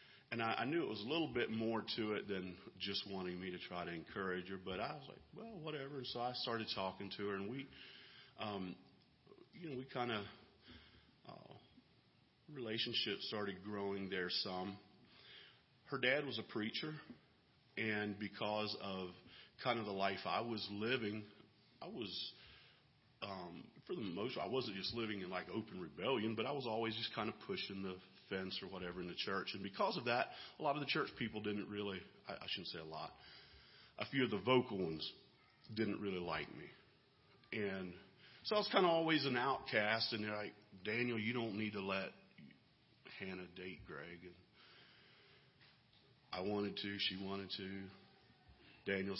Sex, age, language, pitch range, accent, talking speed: male, 40-59, English, 95-110 Hz, American, 180 wpm